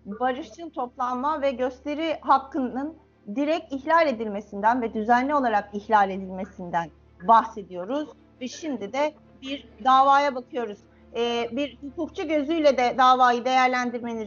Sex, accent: female, native